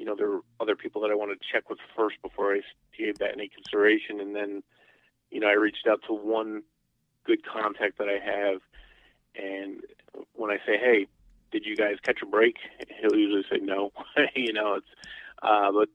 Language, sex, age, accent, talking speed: English, male, 30-49, American, 200 wpm